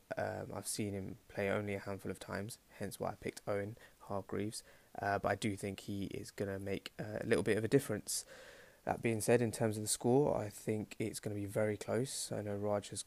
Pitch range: 100-110 Hz